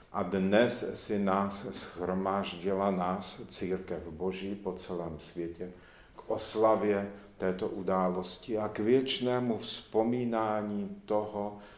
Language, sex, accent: Czech, male, native